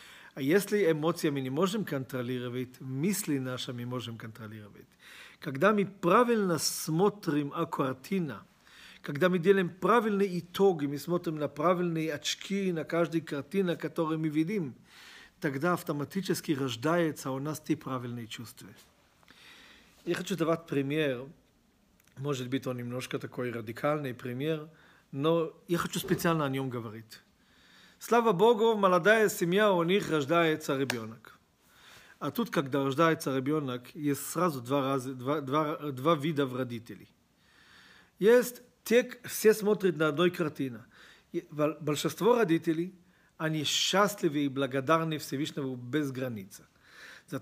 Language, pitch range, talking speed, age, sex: Russian, 135-175 Hz, 125 wpm, 40-59, male